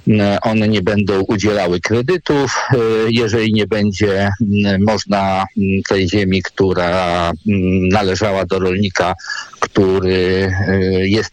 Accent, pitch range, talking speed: native, 105-135 Hz, 90 wpm